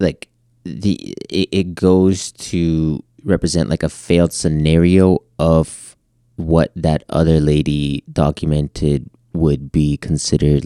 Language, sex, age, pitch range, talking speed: English, male, 20-39, 70-85 Hz, 105 wpm